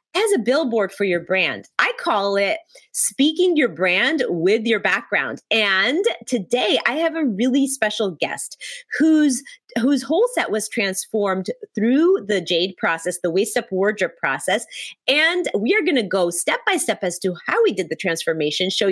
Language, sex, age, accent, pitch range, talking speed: English, female, 30-49, American, 190-315 Hz, 175 wpm